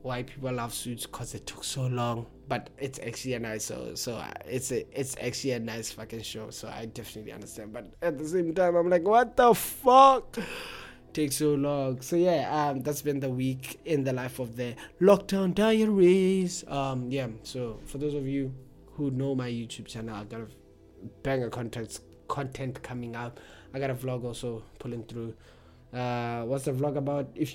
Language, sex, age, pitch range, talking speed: English, male, 20-39, 120-140 Hz, 190 wpm